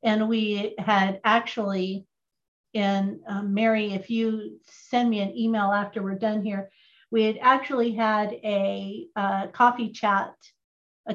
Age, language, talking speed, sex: 40-59, English, 140 wpm, female